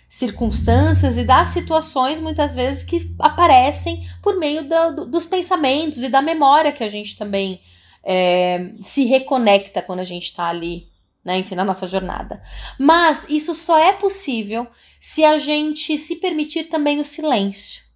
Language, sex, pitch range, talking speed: Portuguese, female, 195-300 Hz, 155 wpm